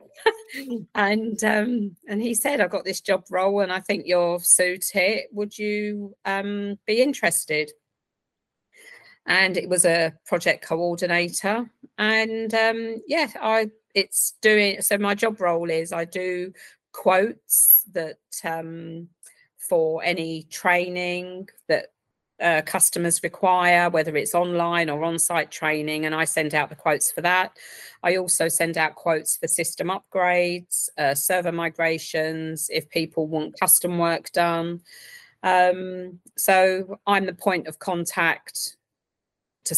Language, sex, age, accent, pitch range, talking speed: English, female, 40-59, British, 160-200 Hz, 135 wpm